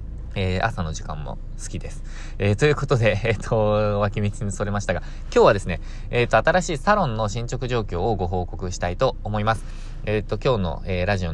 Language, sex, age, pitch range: Japanese, male, 20-39, 95-125 Hz